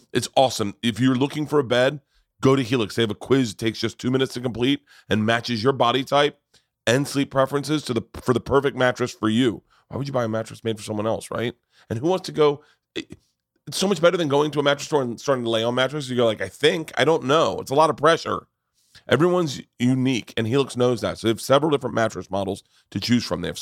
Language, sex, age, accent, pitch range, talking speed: English, male, 30-49, American, 105-135 Hz, 255 wpm